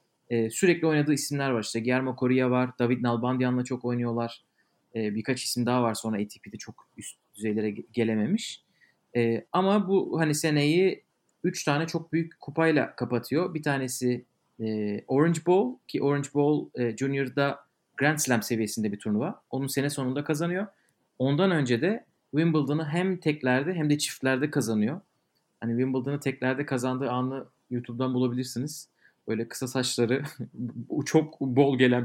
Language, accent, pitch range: Turkish, native, 120-150 Hz